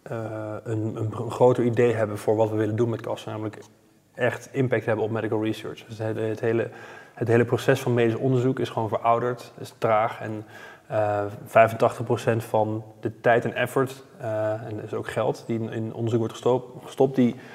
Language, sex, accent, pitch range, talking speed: Dutch, male, Dutch, 110-125 Hz, 200 wpm